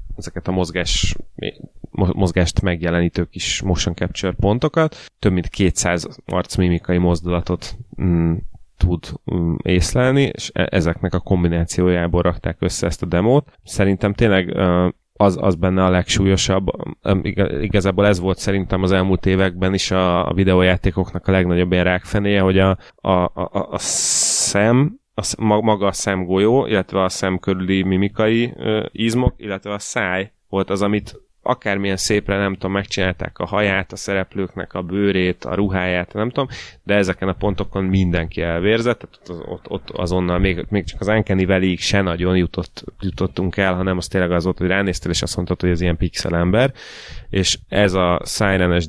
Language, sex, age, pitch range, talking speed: Hungarian, male, 20-39, 90-100 Hz, 155 wpm